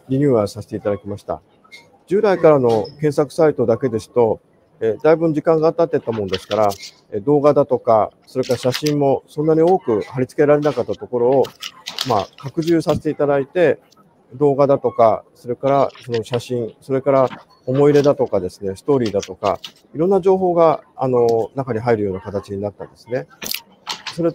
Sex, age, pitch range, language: male, 50-69, 115-160 Hz, Japanese